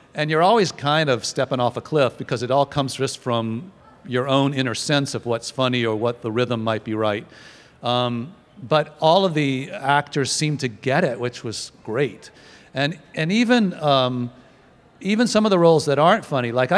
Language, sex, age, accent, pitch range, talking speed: English, male, 50-69, American, 120-150 Hz, 195 wpm